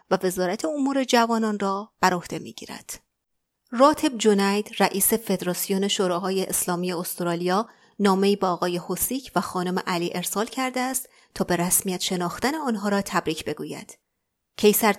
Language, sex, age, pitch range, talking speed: Persian, female, 30-49, 180-230 Hz, 130 wpm